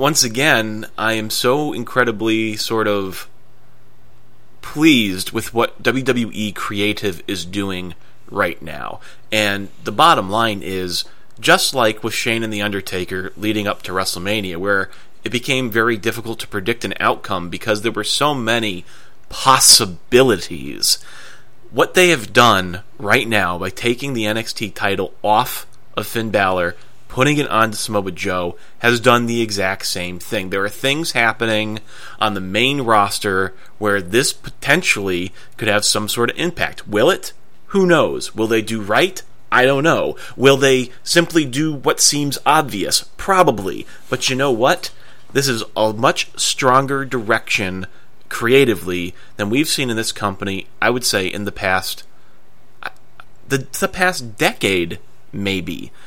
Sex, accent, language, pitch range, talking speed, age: male, American, English, 100-125 Hz, 150 wpm, 30-49